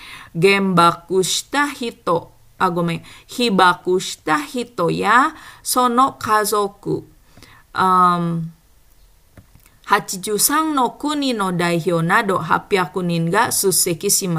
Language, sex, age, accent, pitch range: Japanese, female, 20-39, Indonesian, 175-235 Hz